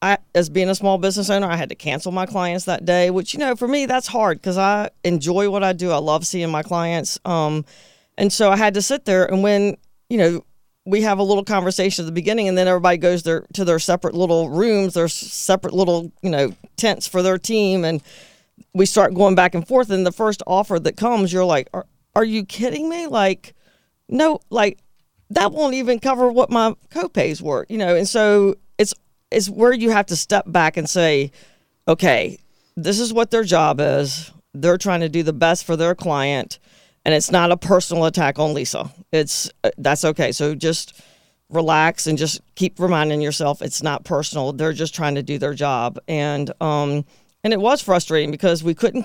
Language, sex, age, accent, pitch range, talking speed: English, female, 40-59, American, 160-205 Hz, 210 wpm